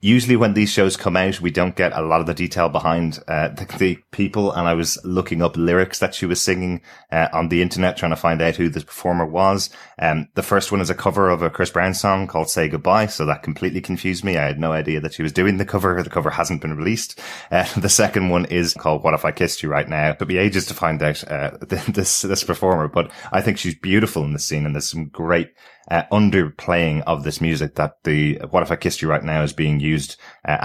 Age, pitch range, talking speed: 20-39, 80-95 Hz, 255 wpm